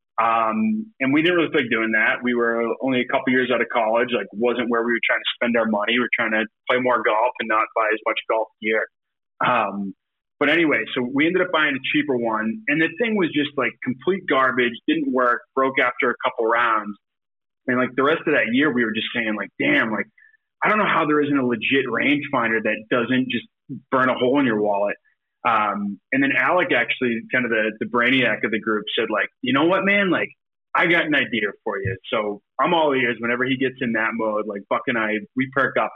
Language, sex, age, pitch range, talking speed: English, male, 20-39, 115-155 Hz, 235 wpm